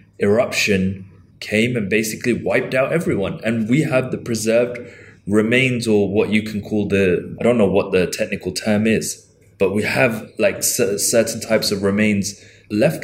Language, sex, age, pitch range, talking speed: English, male, 20-39, 95-115 Hz, 170 wpm